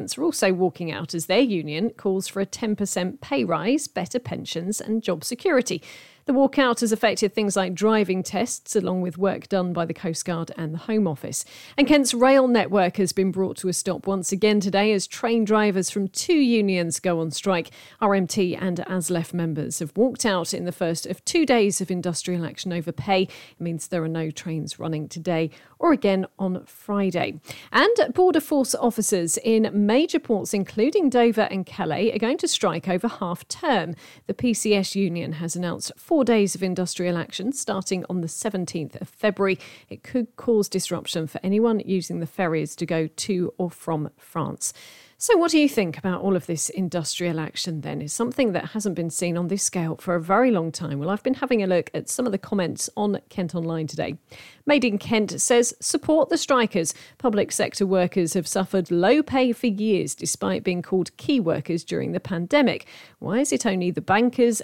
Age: 40-59